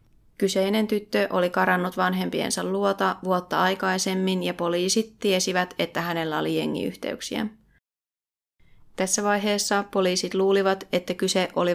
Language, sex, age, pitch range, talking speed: Finnish, female, 30-49, 180-195 Hz, 110 wpm